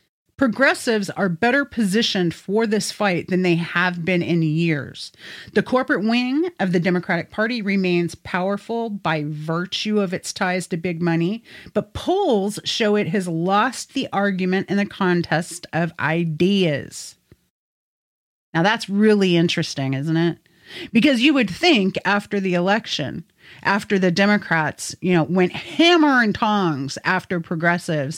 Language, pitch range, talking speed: English, 175-230 Hz, 145 wpm